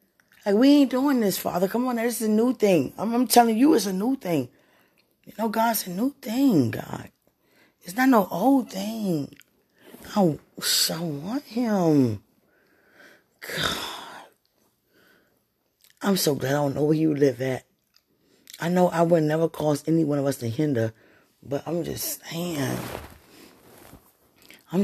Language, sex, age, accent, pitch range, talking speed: English, female, 20-39, American, 155-200 Hz, 155 wpm